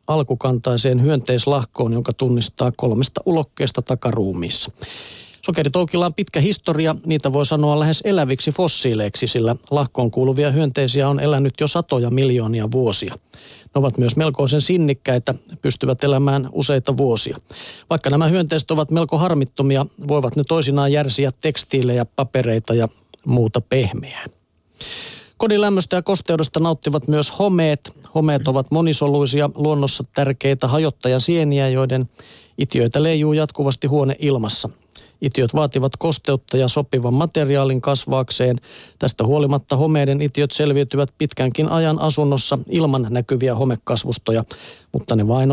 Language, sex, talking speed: Finnish, male, 115 wpm